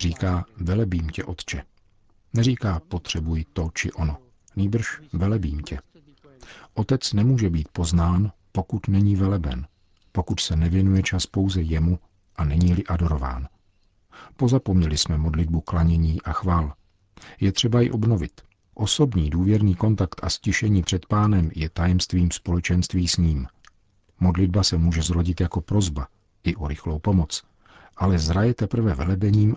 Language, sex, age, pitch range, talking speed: Czech, male, 50-69, 85-100 Hz, 130 wpm